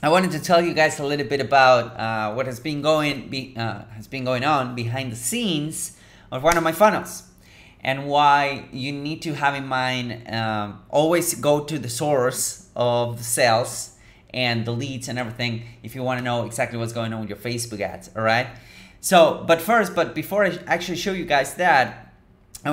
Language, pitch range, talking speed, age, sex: English, 115-150 Hz, 205 wpm, 30-49, male